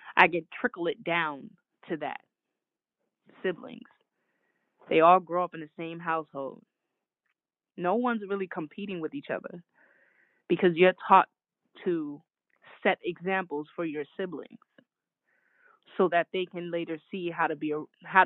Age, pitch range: 20-39, 170-215 Hz